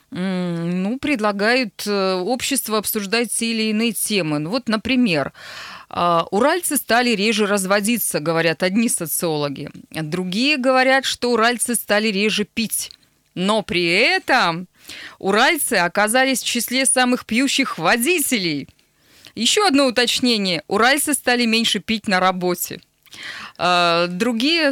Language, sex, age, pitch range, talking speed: Russian, female, 20-39, 190-255 Hz, 105 wpm